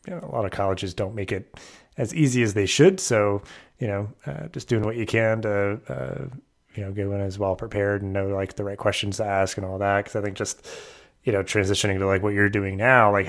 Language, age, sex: English, 30-49, male